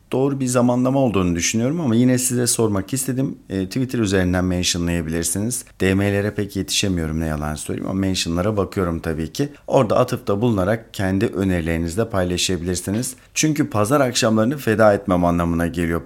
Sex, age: male, 50-69